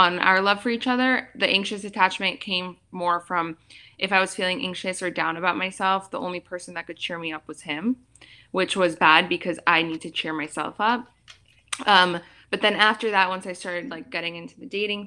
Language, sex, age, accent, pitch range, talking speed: English, female, 20-39, American, 165-205 Hz, 215 wpm